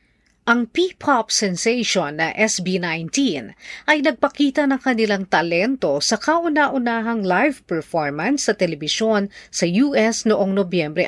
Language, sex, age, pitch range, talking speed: Filipino, female, 40-59, 180-250 Hz, 115 wpm